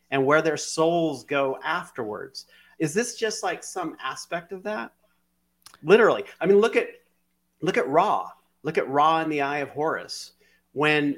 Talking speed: 165 wpm